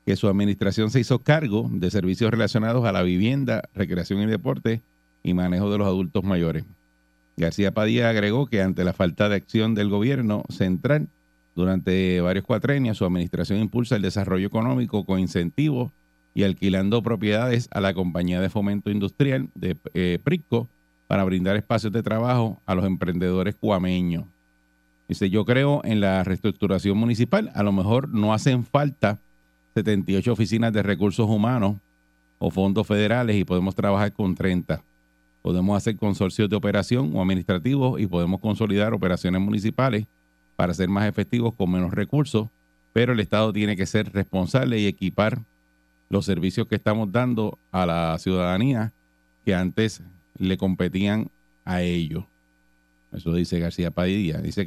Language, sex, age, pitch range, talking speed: Spanish, male, 50-69, 90-110 Hz, 150 wpm